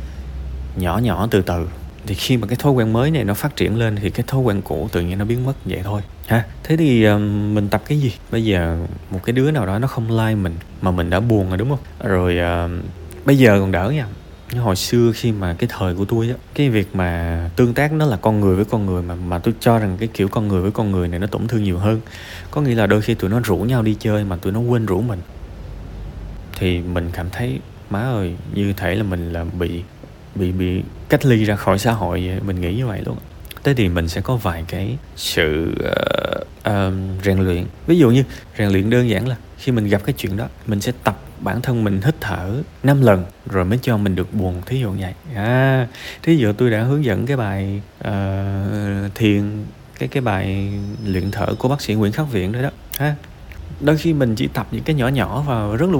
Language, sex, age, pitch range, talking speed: Vietnamese, male, 20-39, 90-120 Hz, 240 wpm